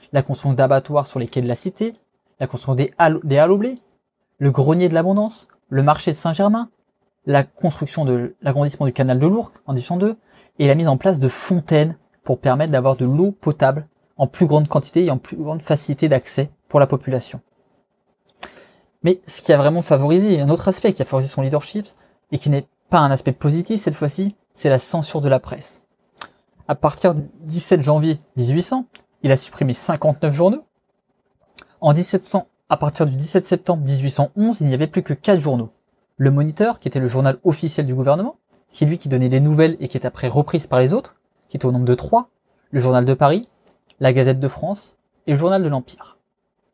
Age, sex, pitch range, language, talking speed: 20-39, male, 135-185 Hz, French, 205 wpm